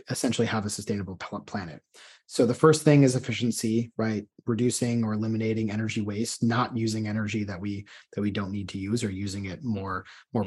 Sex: male